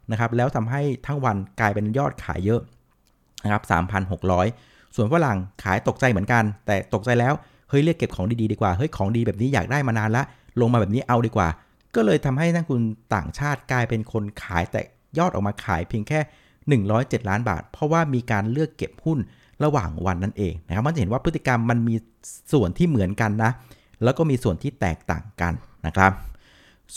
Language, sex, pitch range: Thai, male, 100-130 Hz